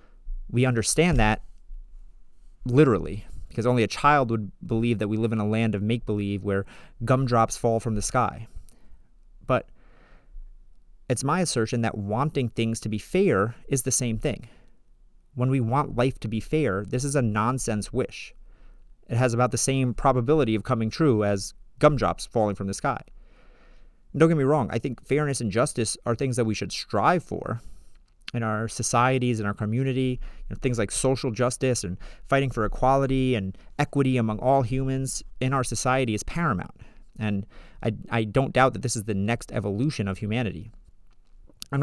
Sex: male